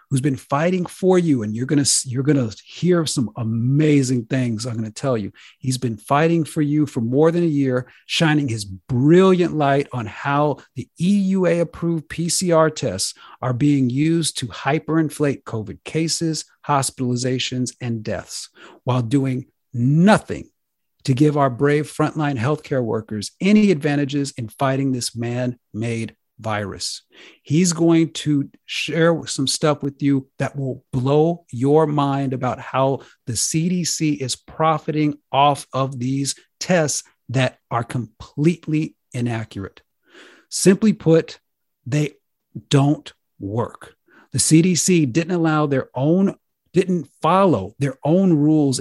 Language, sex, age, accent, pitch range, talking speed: English, male, 40-59, American, 125-160 Hz, 135 wpm